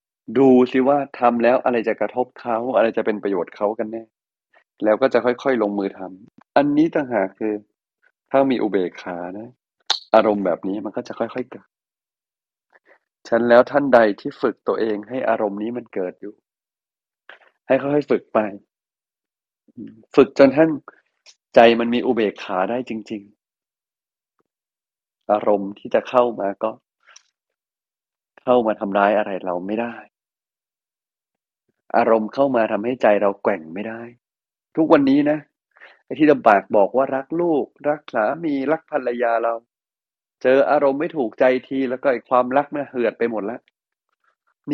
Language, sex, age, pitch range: Thai, male, 30-49, 110-140 Hz